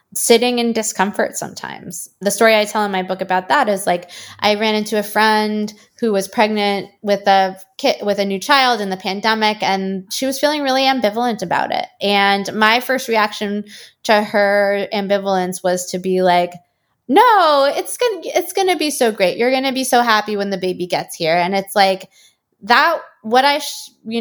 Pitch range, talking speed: 185-220 Hz, 190 wpm